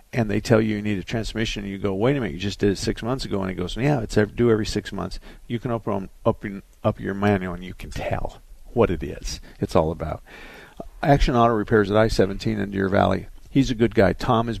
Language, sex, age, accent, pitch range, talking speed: English, male, 50-69, American, 100-115 Hz, 255 wpm